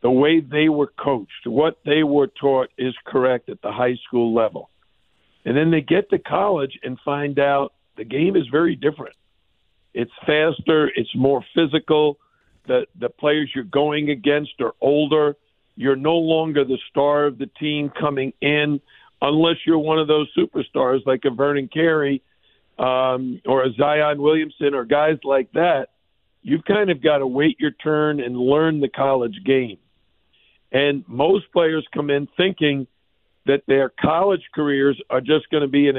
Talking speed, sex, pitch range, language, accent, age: 170 wpm, male, 135-155 Hz, English, American, 50-69